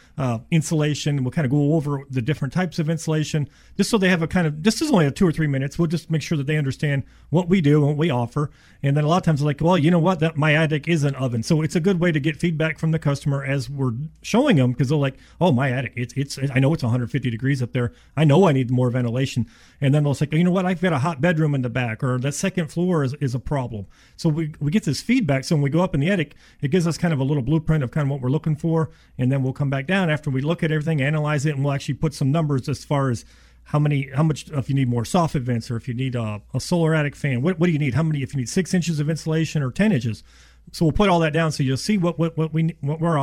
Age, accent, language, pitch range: 40-59, American, English, 130-160 Hz